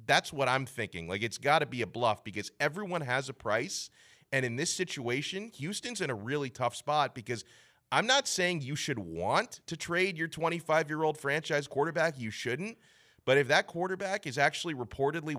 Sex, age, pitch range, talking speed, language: male, 30-49, 105-140 Hz, 185 wpm, English